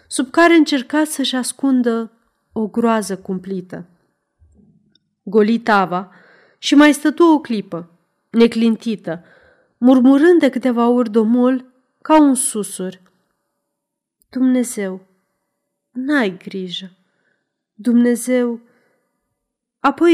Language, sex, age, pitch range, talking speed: Romanian, female, 30-49, 195-255 Hz, 85 wpm